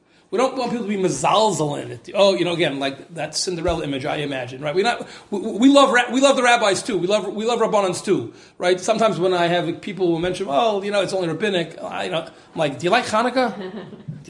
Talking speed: 250 wpm